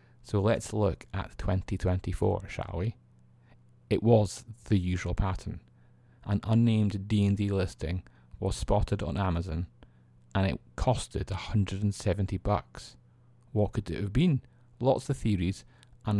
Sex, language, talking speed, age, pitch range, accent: male, English, 125 wpm, 30-49, 90-115 Hz, British